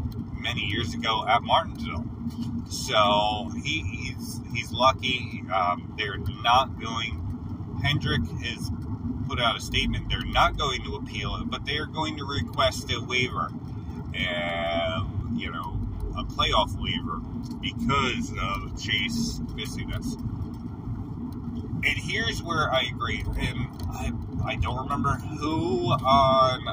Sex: male